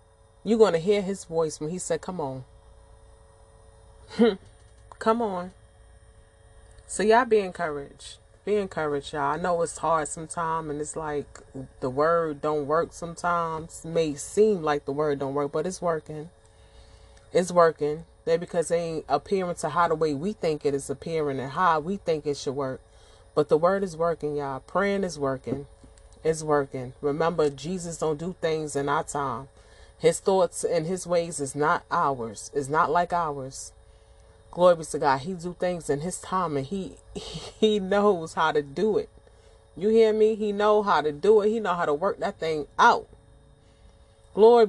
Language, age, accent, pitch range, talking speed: English, 30-49, American, 125-185 Hz, 180 wpm